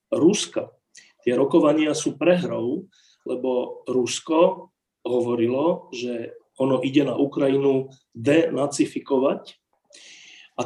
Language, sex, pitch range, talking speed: Slovak, male, 125-175 Hz, 85 wpm